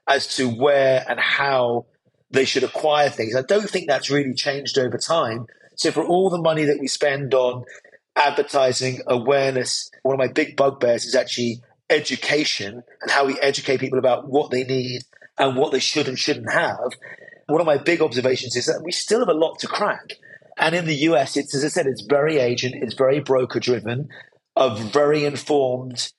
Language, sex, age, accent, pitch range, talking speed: English, male, 30-49, British, 130-150 Hz, 190 wpm